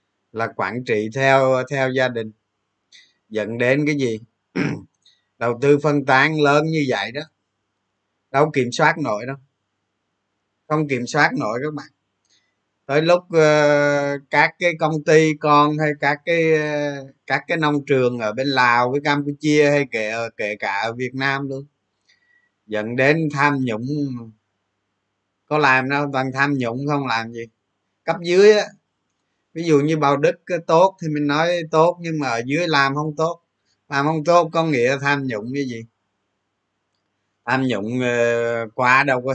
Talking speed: 160 wpm